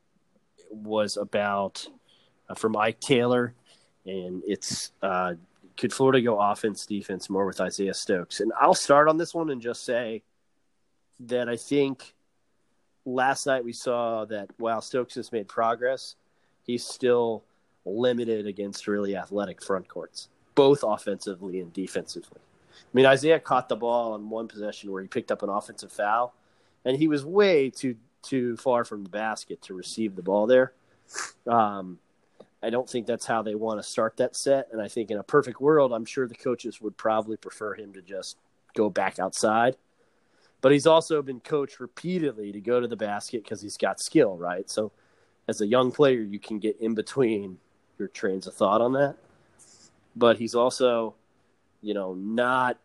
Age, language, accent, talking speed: 30-49, English, American, 175 wpm